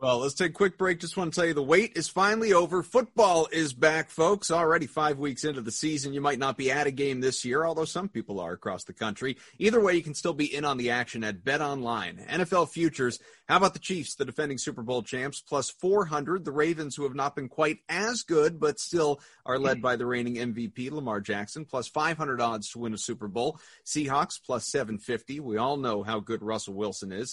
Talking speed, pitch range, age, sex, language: 235 wpm, 115-160 Hz, 30-49, male, English